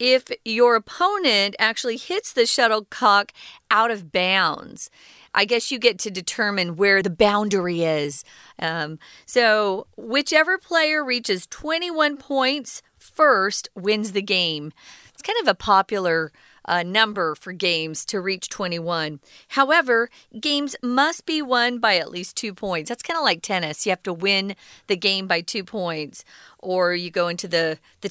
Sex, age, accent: female, 40-59, American